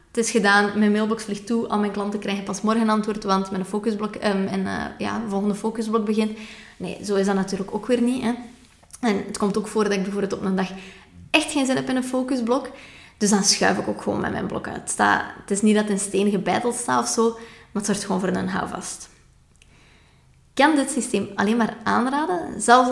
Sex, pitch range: female, 200-240 Hz